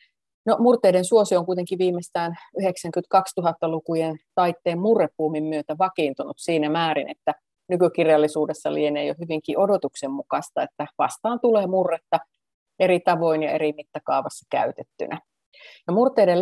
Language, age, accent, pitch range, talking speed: Finnish, 30-49, native, 155-200 Hz, 120 wpm